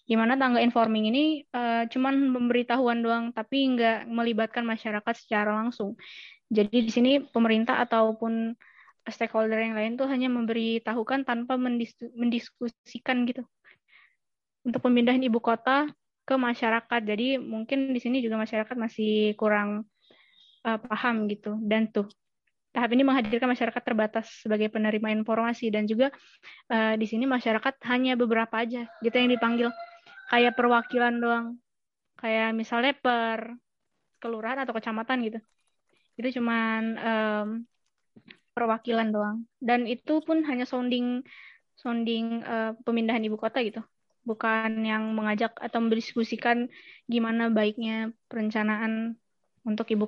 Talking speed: 125 wpm